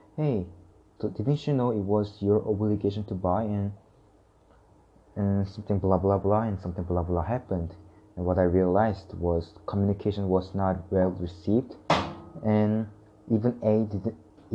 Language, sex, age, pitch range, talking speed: English, male, 20-39, 100-110 Hz, 155 wpm